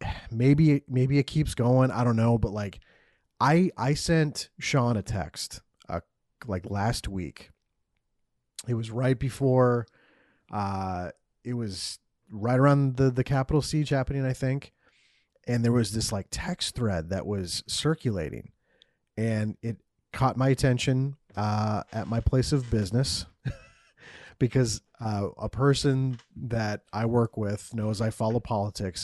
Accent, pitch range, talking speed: American, 105-130 Hz, 145 wpm